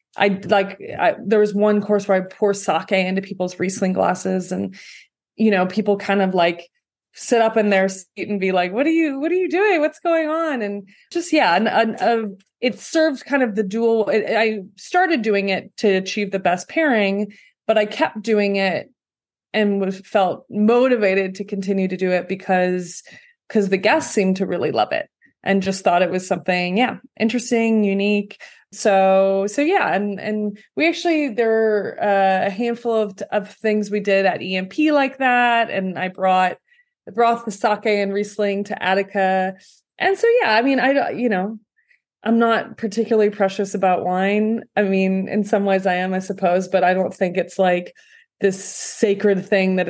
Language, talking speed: English, 190 wpm